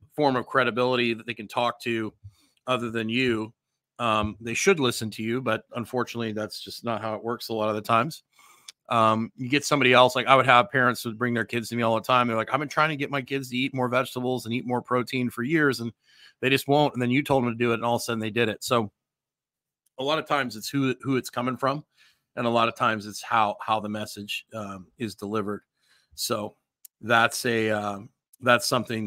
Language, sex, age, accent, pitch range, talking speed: English, male, 30-49, American, 110-125 Hz, 245 wpm